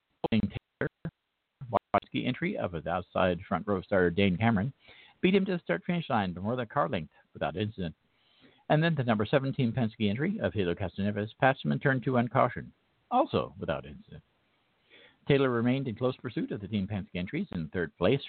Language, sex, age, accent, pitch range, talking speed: English, male, 50-69, American, 100-135 Hz, 175 wpm